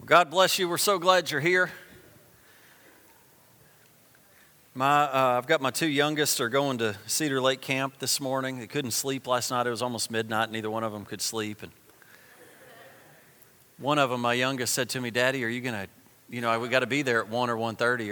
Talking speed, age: 210 wpm, 40-59